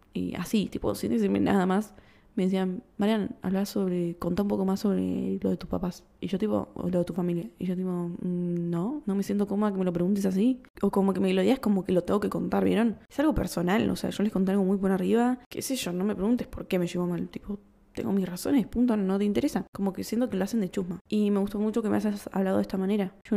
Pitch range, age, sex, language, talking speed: 180-210 Hz, 10-29, female, Spanish, 275 wpm